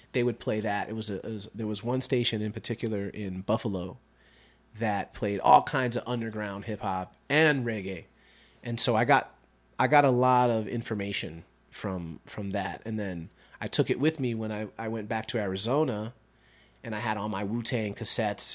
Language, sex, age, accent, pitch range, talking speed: English, male, 30-49, American, 100-120 Hz, 200 wpm